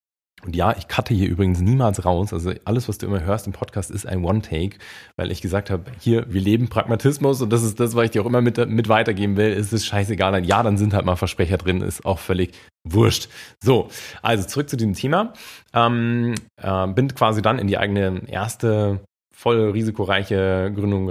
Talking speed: 205 wpm